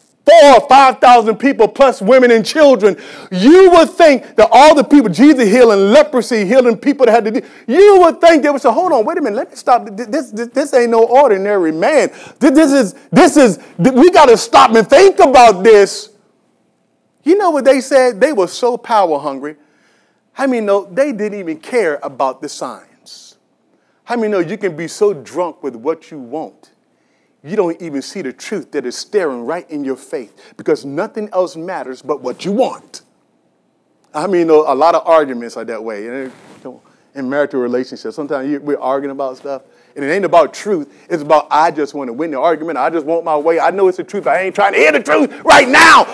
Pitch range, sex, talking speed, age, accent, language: 165-280 Hz, male, 210 wpm, 40-59, American, English